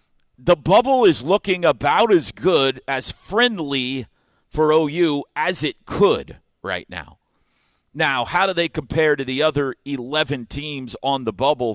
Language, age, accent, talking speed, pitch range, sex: English, 50-69, American, 150 wpm, 115-145 Hz, male